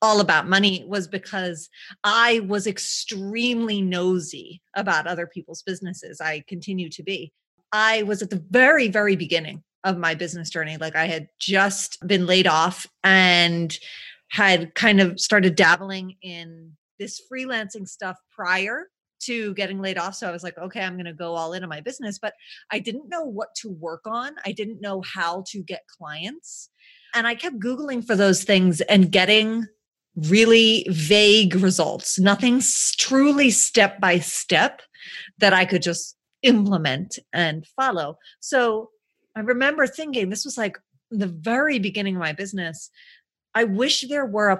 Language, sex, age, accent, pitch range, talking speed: English, female, 30-49, American, 175-220 Hz, 160 wpm